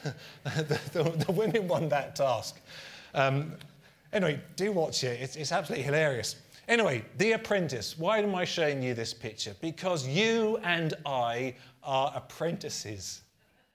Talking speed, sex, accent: 140 wpm, male, British